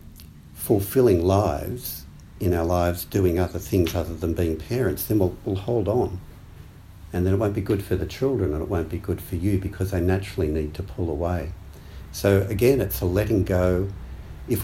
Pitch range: 80-95 Hz